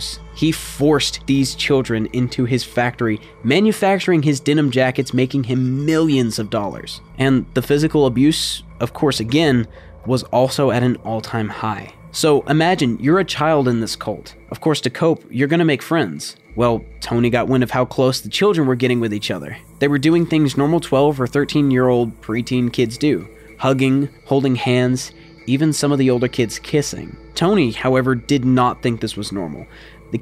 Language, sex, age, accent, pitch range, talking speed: English, male, 20-39, American, 115-140 Hz, 185 wpm